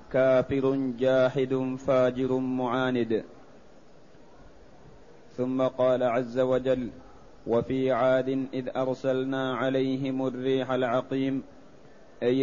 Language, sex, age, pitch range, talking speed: Arabic, male, 30-49, 125-130 Hz, 75 wpm